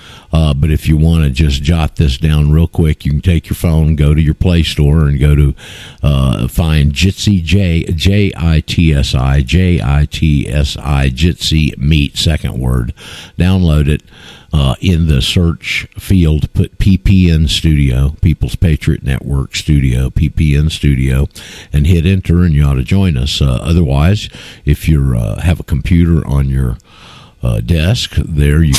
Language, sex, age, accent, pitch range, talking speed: English, male, 50-69, American, 70-90 Hz, 175 wpm